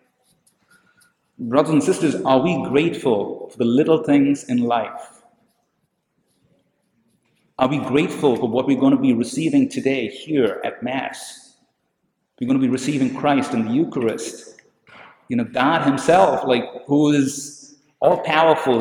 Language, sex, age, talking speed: English, male, 50-69, 140 wpm